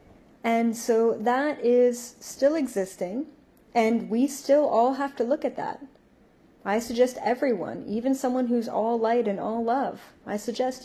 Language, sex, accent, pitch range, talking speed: English, female, American, 215-265 Hz, 155 wpm